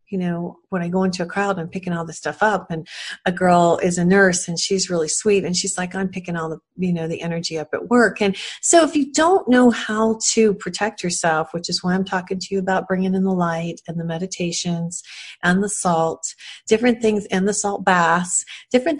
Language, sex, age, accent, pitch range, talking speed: English, female, 40-59, American, 170-215 Hz, 230 wpm